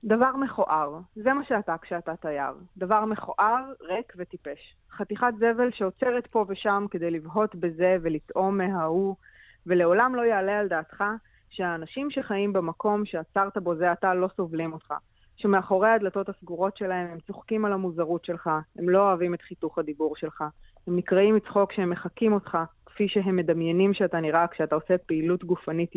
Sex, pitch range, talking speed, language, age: female, 165-205 Hz, 155 wpm, Hebrew, 20-39